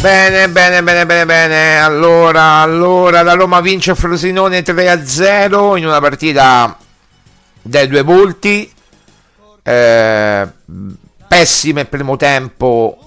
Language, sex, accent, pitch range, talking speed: Italian, male, native, 100-145 Hz, 105 wpm